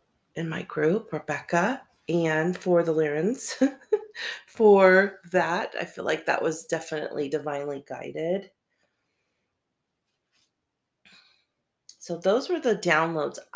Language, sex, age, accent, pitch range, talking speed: English, female, 30-49, American, 155-195 Hz, 100 wpm